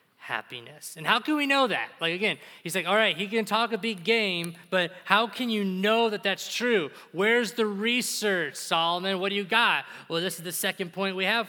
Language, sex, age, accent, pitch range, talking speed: English, male, 20-39, American, 155-210 Hz, 225 wpm